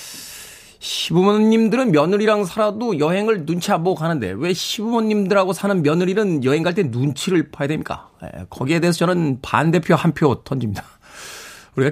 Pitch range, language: 135-185 Hz, Korean